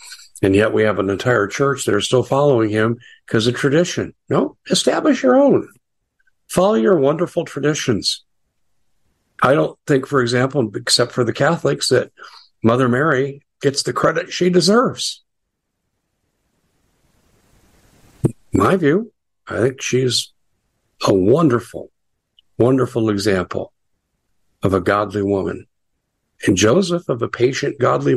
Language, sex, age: English, male, 50-69